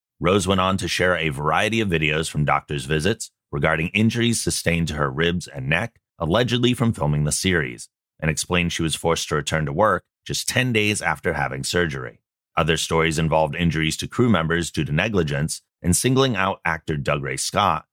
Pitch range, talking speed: 75-105 Hz, 190 wpm